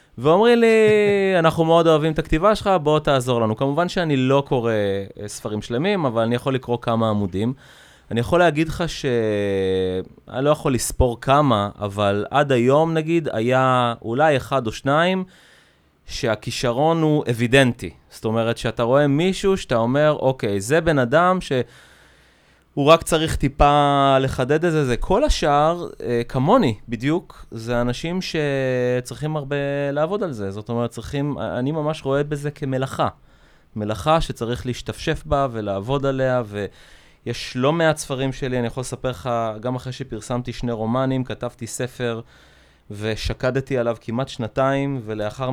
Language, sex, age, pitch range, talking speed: Hebrew, male, 20-39, 115-145 Hz, 145 wpm